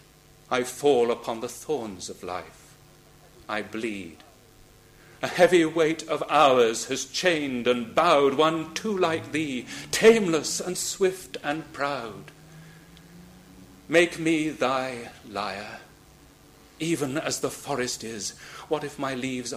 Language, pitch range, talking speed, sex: English, 130-185 Hz, 125 wpm, male